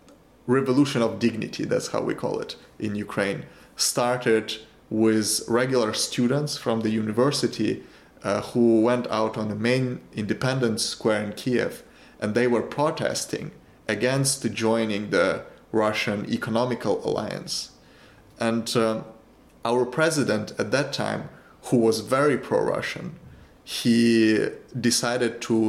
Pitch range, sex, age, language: 110-125 Hz, male, 30-49, Chinese